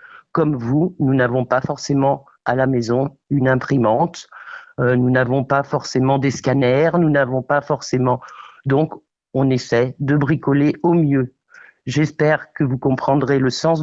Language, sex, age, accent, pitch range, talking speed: French, male, 50-69, French, 135-170 Hz, 150 wpm